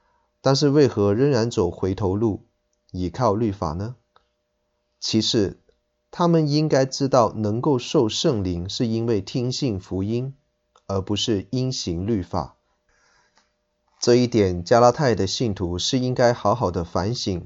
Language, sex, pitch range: Chinese, male, 90-125 Hz